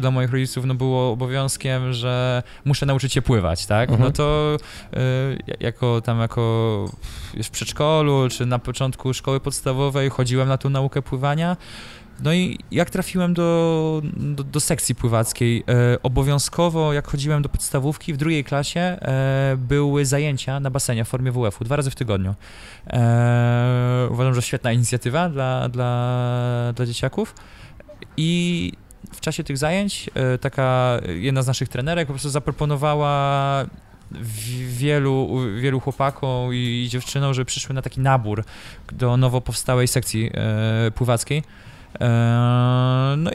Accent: native